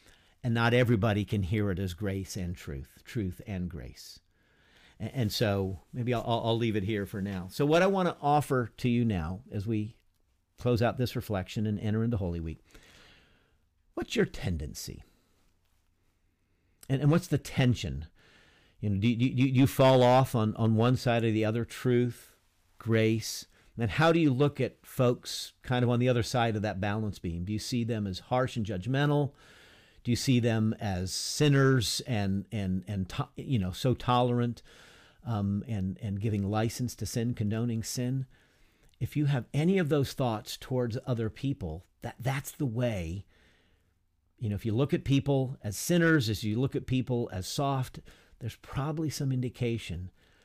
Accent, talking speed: American, 180 wpm